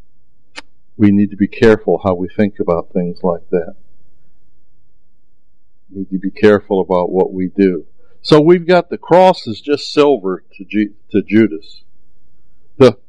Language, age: English, 60-79